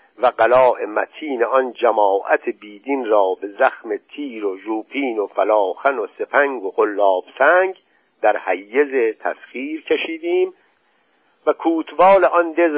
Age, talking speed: 50-69, 125 wpm